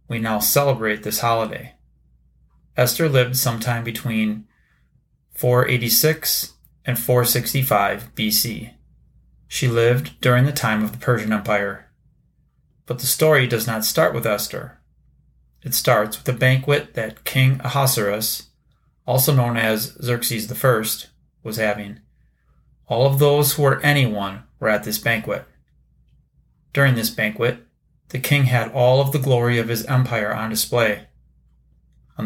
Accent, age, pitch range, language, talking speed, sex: American, 30-49, 105-130 Hz, English, 145 wpm, male